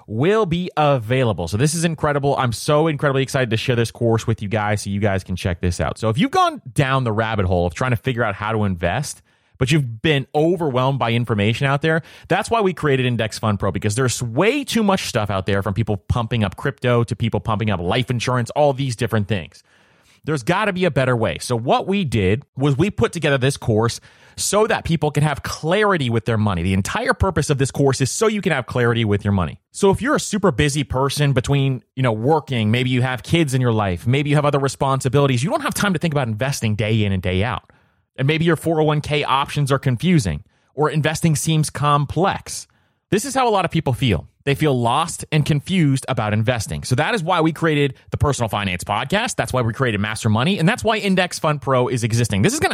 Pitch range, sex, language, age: 115-165 Hz, male, English, 30-49